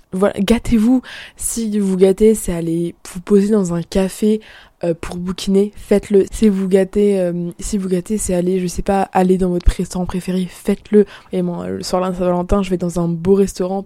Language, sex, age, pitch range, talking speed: French, female, 20-39, 180-200 Hz, 205 wpm